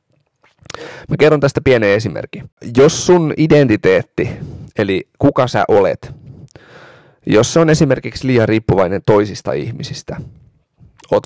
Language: Finnish